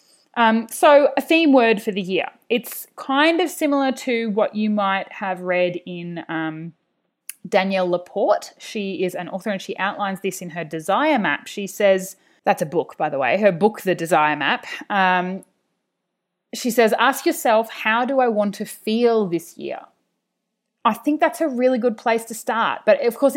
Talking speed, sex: 185 wpm, female